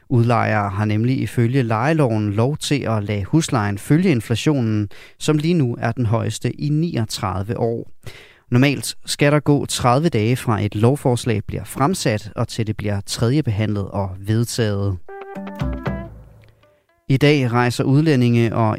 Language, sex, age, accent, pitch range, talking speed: Danish, male, 30-49, native, 110-135 Hz, 145 wpm